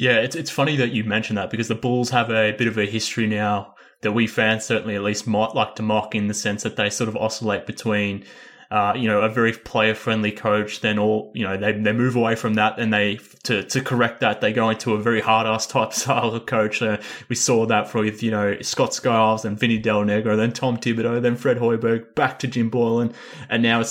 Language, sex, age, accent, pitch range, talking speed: English, male, 20-39, Australian, 105-115 Hz, 245 wpm